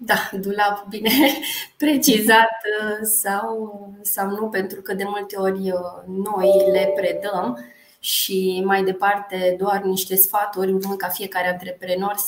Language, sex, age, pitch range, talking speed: Romanian, female, 20-39, 185-225 Hz, 120 wpm